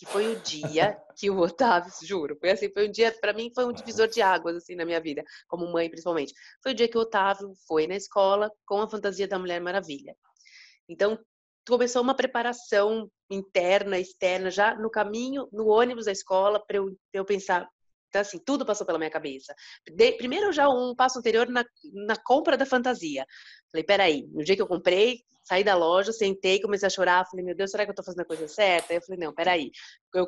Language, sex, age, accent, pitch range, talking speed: Portuguese, female, 20-39, Brazilian, 180-230 Hz, 215 wpm